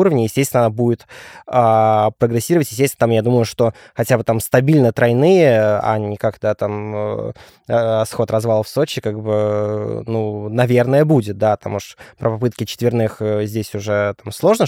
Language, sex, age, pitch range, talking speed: Russian, male, 20-39, 105-130 Hz, 165 wpm